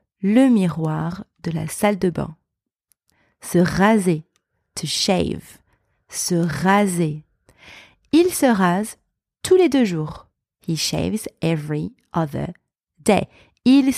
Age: 30-49